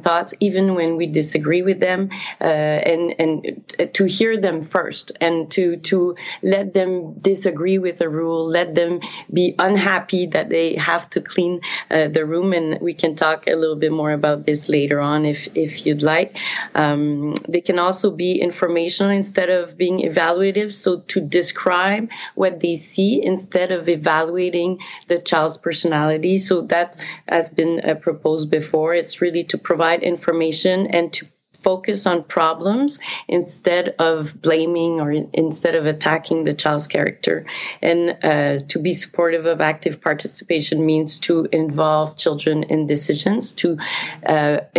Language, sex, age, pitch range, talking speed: English, female, 30-49, 155-180 Hz, 155 wpm